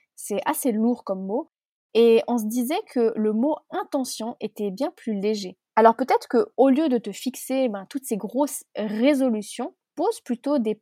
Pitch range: 220-275 Hz